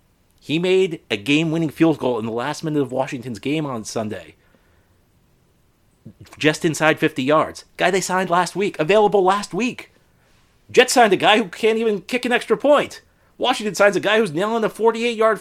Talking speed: 180 wpm